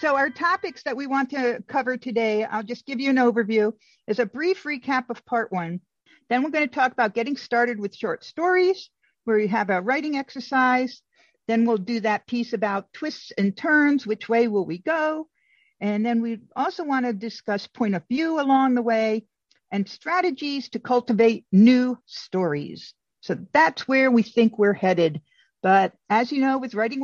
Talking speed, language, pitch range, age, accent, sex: 190 wpm, English, 215-270 Hz, 50-69, American, female